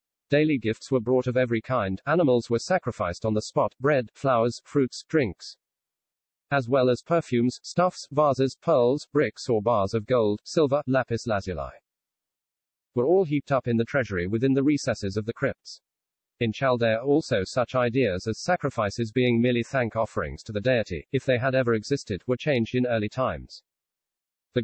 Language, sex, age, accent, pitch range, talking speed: English, male, 40-59, British, 110-140 Hz, 170 wpm